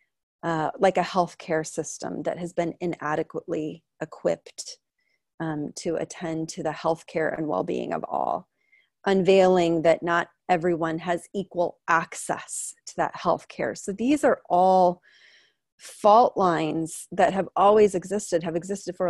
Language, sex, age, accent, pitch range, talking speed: English, female, 30-49, American, 165-210 Hz, 140 wpm